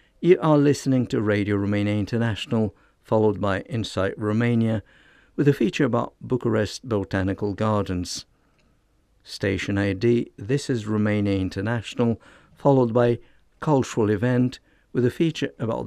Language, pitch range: English, 100-125 Hz